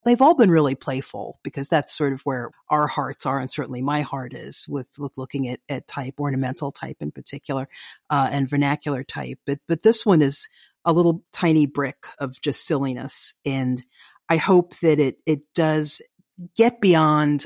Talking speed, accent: 180 wpm, American